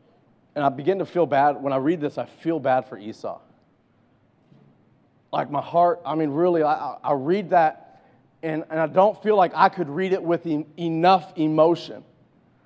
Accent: American